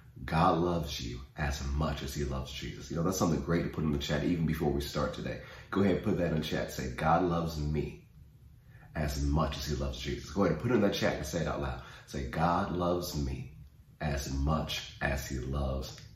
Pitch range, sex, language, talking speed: 75-95 Hz, male, English, 240 wpm